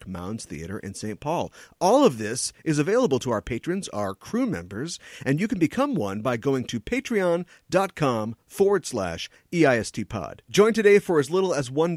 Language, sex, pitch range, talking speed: English, male, 110-160 Hz, 180 wpm